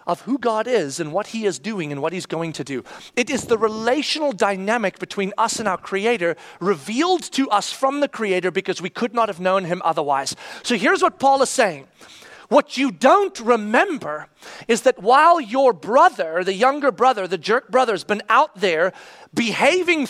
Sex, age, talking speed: male, 40-59, 190 wpm